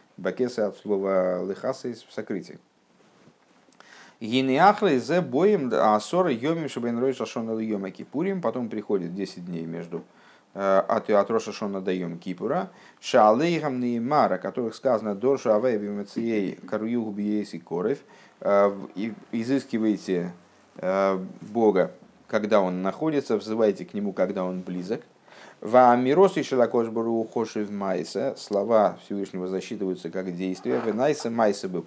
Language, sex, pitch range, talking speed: Russian, male, 95-125 Hz, 85 wpm